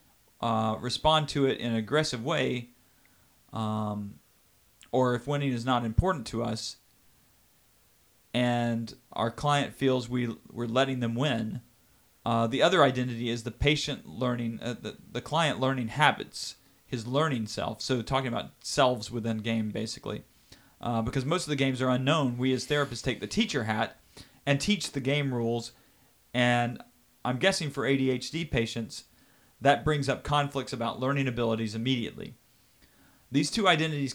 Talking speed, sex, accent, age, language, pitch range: 155 wpm, male, American, 40-59, English, 115-140 Hz